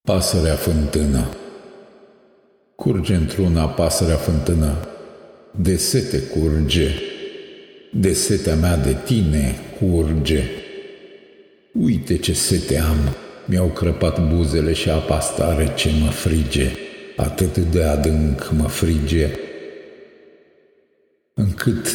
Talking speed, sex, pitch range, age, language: 90 wpm, male, 75-120 Hz, 50-69, Romanian